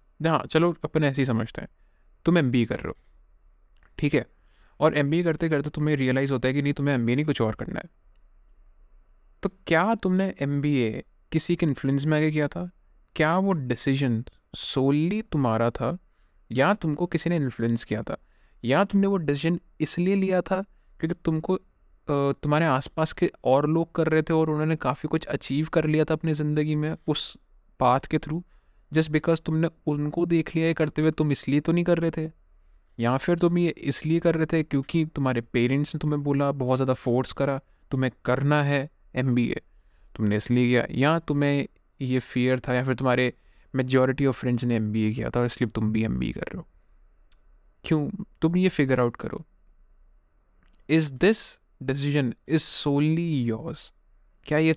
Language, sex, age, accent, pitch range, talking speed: Hindi, male, 20-39, native, 120-160 Hz, 180 wpm